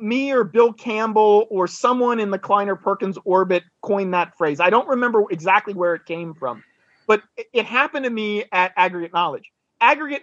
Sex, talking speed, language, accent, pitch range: male, 180 wpm, English, American, 190-240 Hz